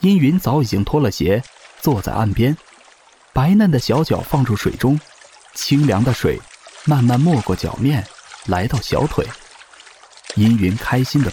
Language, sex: Chinese, male